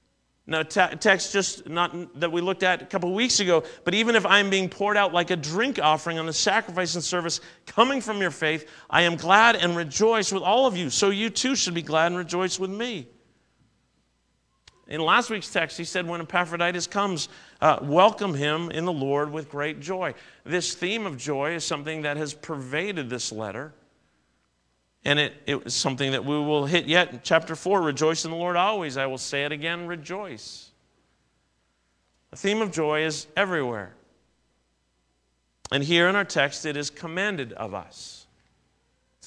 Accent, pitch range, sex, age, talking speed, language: American, 140-185 Hz, male, 40-59, 185 wpm, English